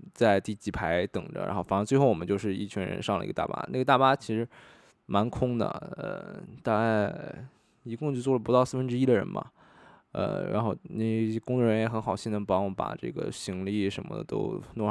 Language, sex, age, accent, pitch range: Chinese, male, 20-39, native, 100-125 Hz